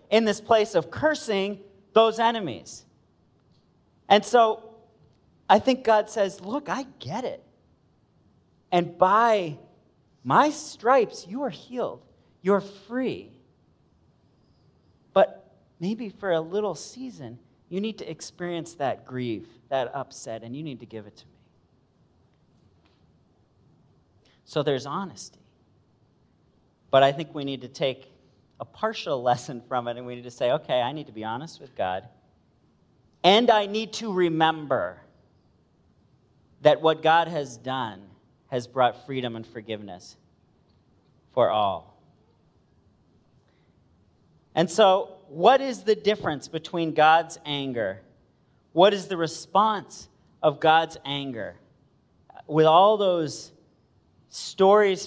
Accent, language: American, English